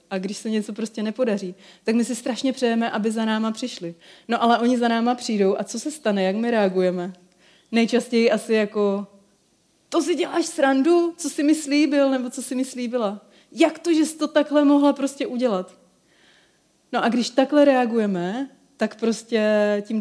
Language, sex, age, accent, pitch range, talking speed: Czech, female, 30-49, native, 195-240 Hz, 185 wpm